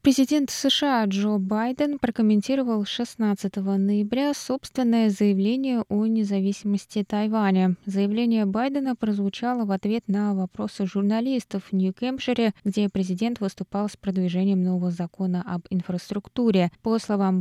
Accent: native